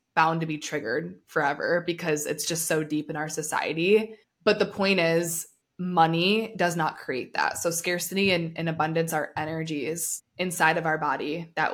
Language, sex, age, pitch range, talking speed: English, female, 20-39, 160-185 Hz, 175 wpm